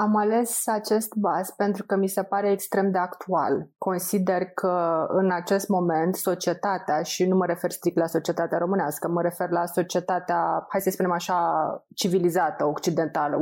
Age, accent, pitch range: 20-39, native, 170-200 Hz